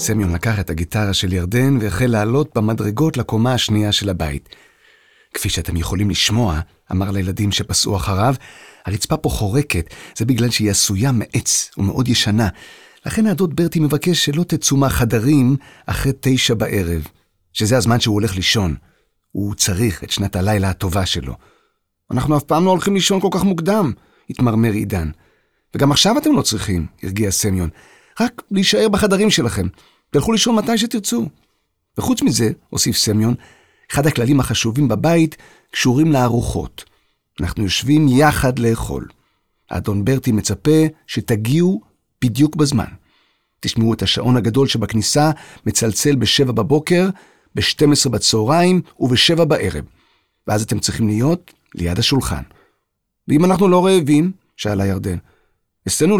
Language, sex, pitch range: Hebrew, male, 100-150 Hz